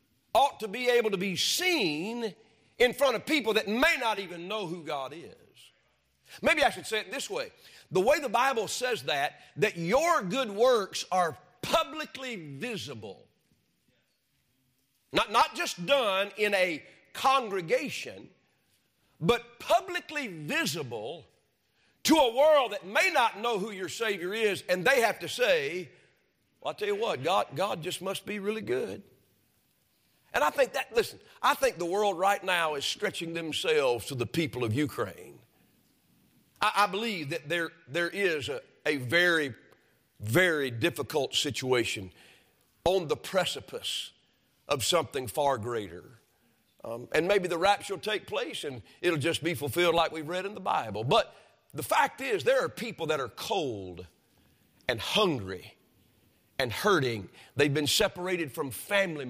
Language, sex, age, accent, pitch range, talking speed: English, male, 50-69, American, 165-265 Hz, 155 wpm